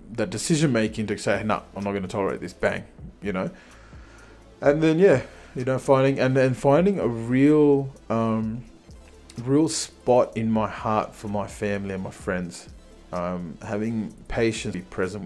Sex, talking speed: male, 170 wpm